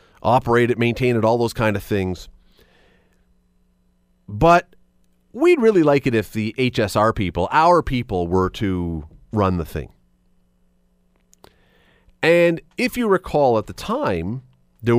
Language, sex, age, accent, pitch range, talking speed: English, male, 30-49, American, 90-150 Hz, 130 wpm